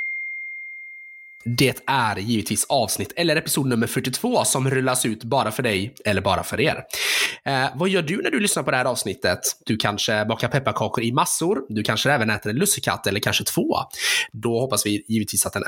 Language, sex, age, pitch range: Swedish, male, 20-39, 115-155 Hz